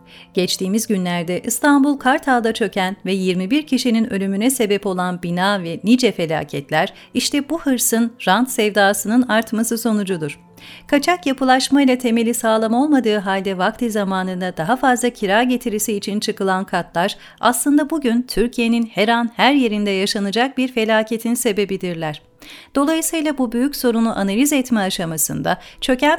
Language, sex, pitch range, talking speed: Turkish, female, 195-255 Hz, 130 wpm